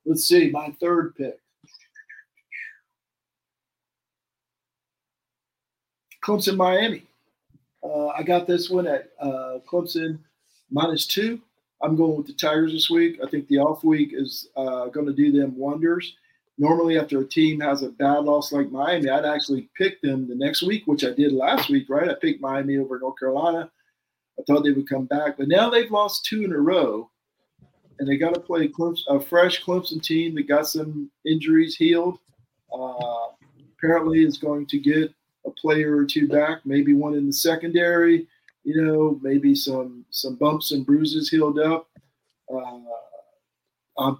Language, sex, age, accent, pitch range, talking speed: English, male, 50-69, American, 140-170 Hz, 160 wpm